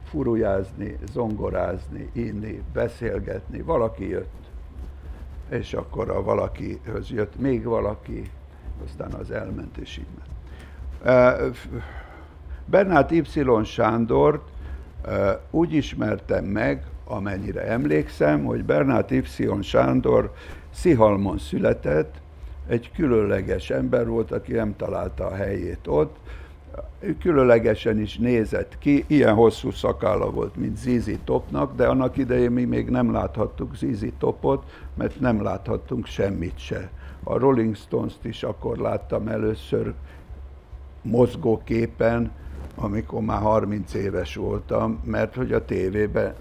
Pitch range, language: 75-115 Hz, Hungarian